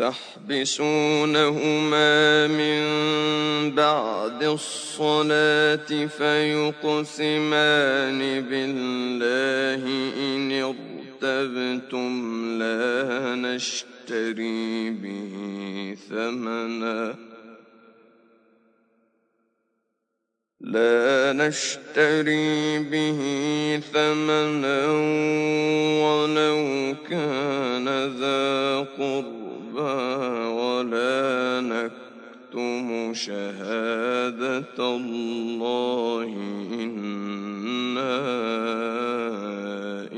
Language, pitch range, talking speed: Arabic, 115-150 Hz, 35 wpm